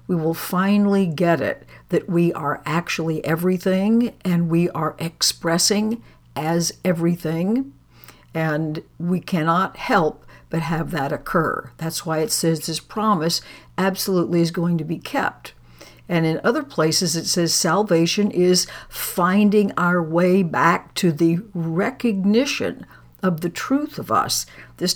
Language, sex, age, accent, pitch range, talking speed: English, female, 60-79, American, 165-195 Hz, 135 wpm